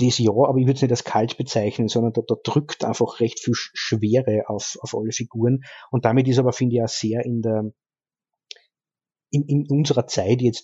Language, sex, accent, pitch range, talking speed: German, male, Austrian, 115-135 Hz, 215 wpm